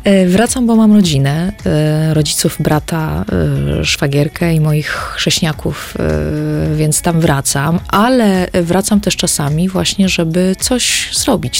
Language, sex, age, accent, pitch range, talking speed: Polish, female, 20-39, native, 160-185 Hz, 110 wpm